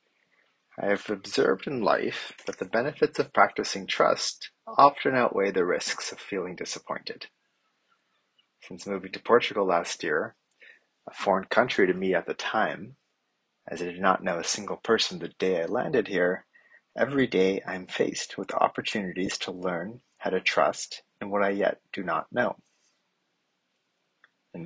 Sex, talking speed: male, 160 wpm